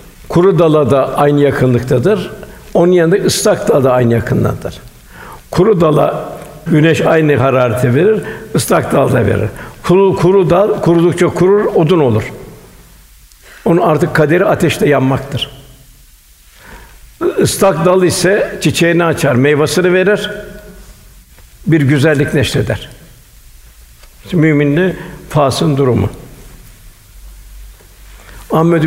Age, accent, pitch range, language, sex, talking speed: 60-79, native, 125-170 Hz, Turkish, male, 100 wpm